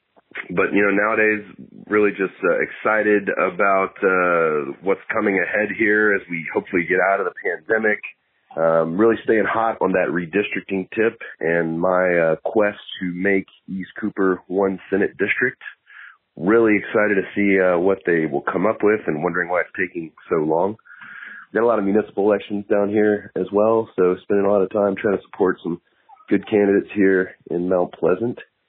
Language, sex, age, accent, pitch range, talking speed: English, male, 30-49, American, 85-105 Hz, 180 wpm